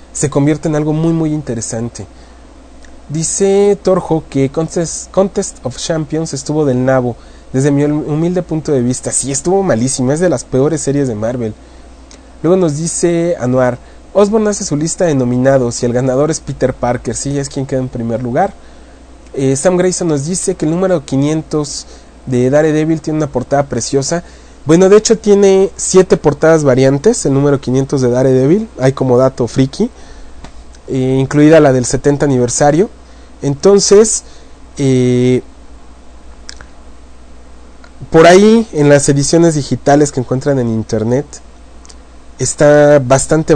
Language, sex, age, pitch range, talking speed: English, male, 30-49, 125-160 Hz, 150 wpm